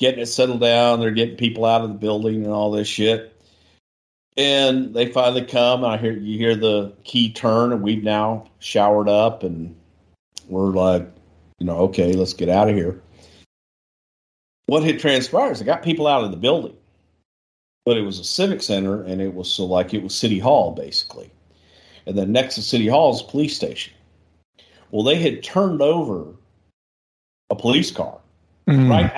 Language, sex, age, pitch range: English, male, 50-69, 90-125 Hz